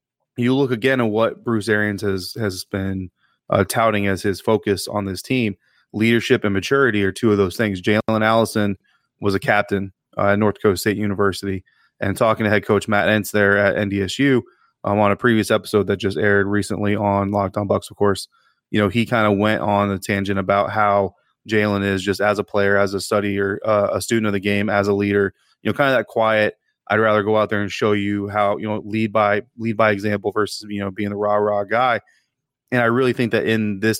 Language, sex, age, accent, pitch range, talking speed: English, male, 20-39, American, 100-110 Hz, 225 wpm